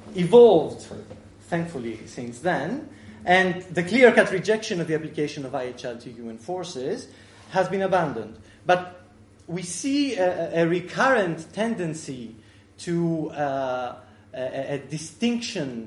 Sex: male